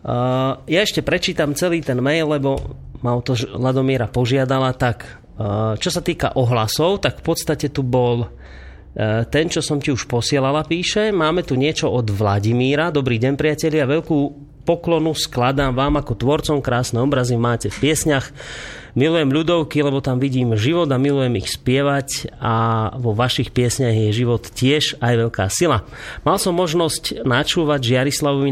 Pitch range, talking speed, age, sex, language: 120-145 Hz, 165 wpm, 30-49, male, Slovak